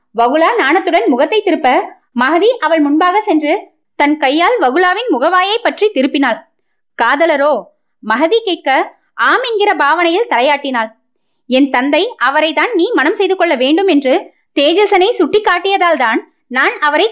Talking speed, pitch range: 125 wpm, 275-370 Hz